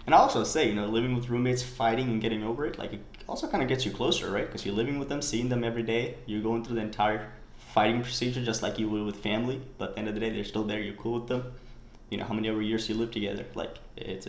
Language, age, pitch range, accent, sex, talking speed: English, 20-39, 105-120 Hz, American, male, 295 wpm